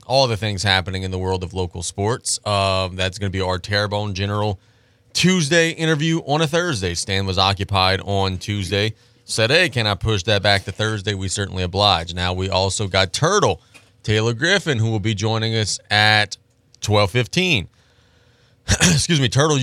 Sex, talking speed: male, 175 wpm